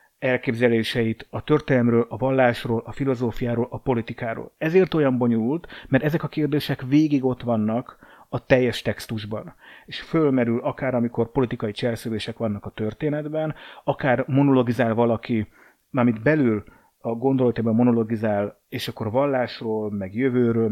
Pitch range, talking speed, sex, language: 115-145 Hz, 135 wpm, male, Hungarian